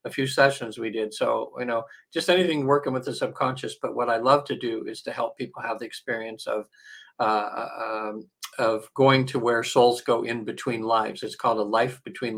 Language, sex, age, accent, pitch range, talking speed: English, male, 50-69, American, 115-130 Hz, 215 wpm